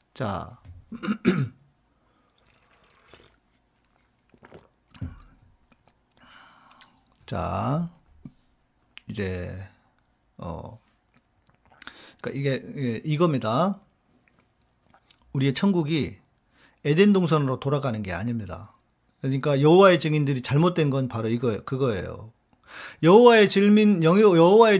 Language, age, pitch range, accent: Korean, 50-69, 135-215 Hz, native